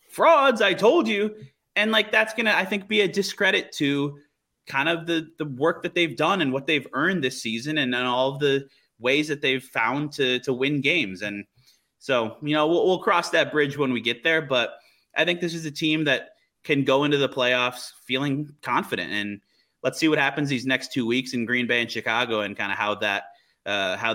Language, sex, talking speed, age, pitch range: English, male, 225 wpm, 20-39, 115-150 Hz